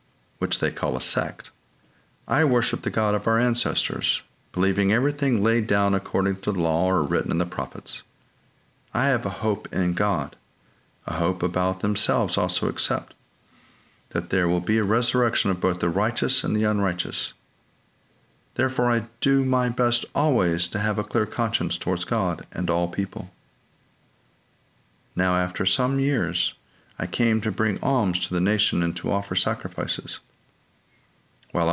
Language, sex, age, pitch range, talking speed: English, male, 40-59, 90-115 Hz, 155 wpm